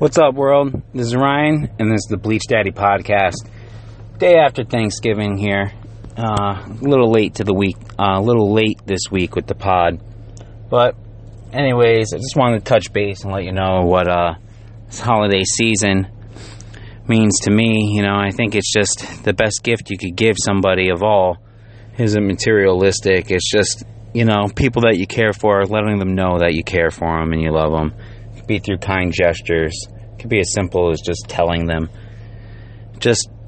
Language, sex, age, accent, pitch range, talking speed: English, male, 30-49, American, 100-110 Hz, 185 wpm